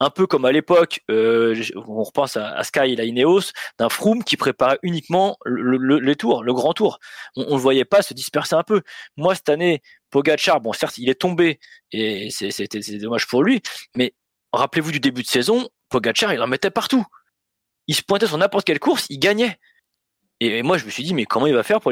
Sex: male